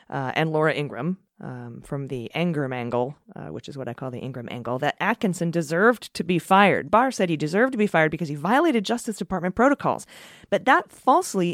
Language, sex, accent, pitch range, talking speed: English, female, American, 150-195 Hz, 210 wpm